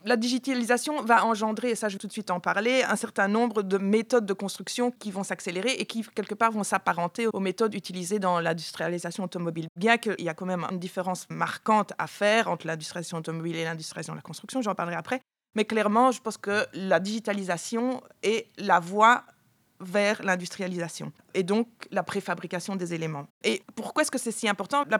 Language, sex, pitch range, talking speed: French, female, 185-235 Hz, 200 wpm